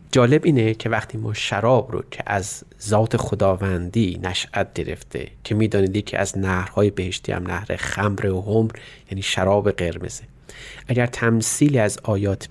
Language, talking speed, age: Persian, 150 wpm, 30-49